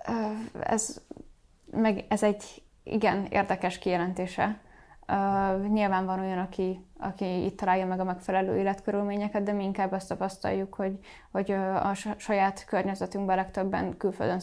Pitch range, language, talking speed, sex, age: 185-215 Hz, Hungarian, 130 wpm, female, 10-29